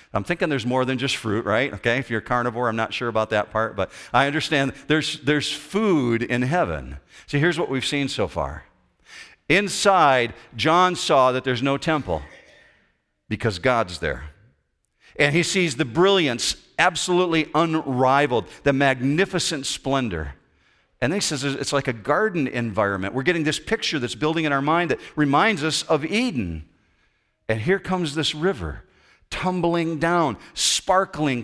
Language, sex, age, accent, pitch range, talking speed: English, male, 50-69, American, 110-165 Hz, 160 wpm